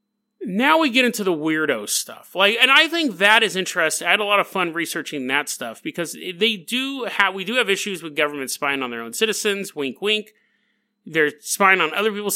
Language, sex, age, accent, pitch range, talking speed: English, male, 30-49, American, 160-220 Hz, 220 wpm